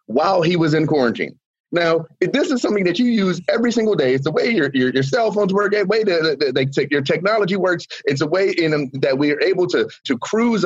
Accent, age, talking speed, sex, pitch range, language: American, 30-49, 250 wpm, male, 140-210 Hz, English